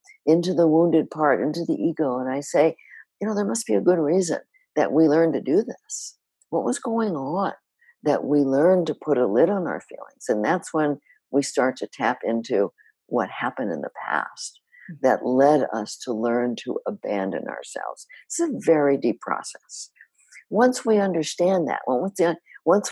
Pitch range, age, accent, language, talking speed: 140-200 Hz, 60-79, American, English, 190 wpm